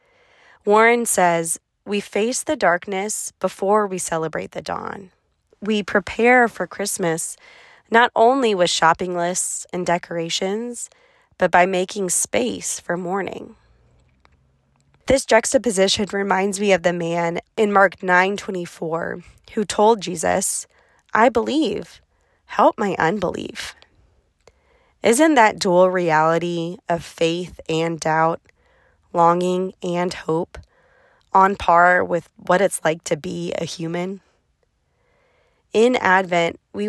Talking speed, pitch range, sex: 115 wpm, 170-210 Hz, female